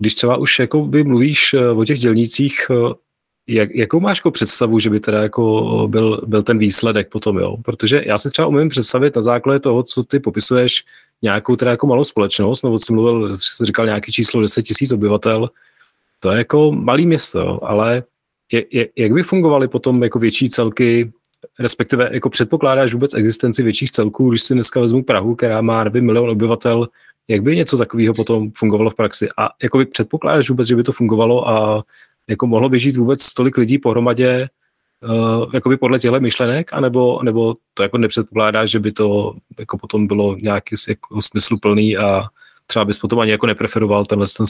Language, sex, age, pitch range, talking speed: Czech, male, 30-49, 110-130 Hz, 185 wpm